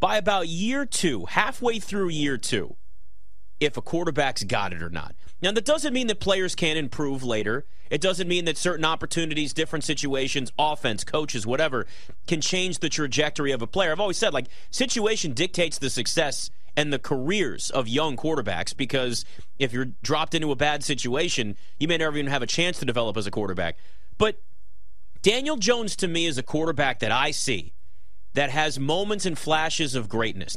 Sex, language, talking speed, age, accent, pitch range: male, English, 185 wpm, 30-49, American, 125-180 Hz